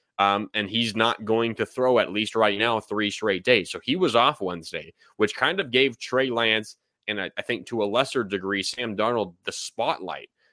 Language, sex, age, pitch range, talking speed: English, male, 20-39, 120-150 Hz, 210 wpm